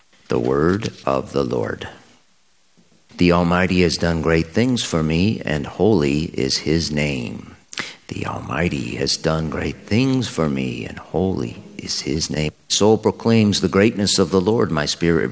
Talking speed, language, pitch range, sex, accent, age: 155 wpm, English, 70-95 Hz, male, American, 50-69